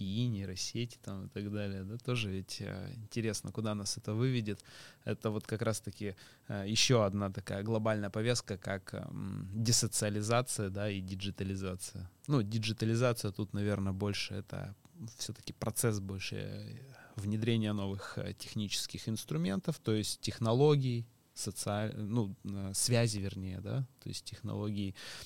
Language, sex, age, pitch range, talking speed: Russian, male, 20-39, 100-125 Hz, 120 wpm